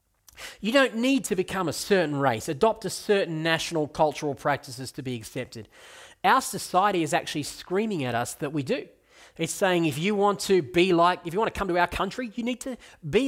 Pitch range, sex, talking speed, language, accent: 150-210 Hz, male, 215 wpm, English, Australian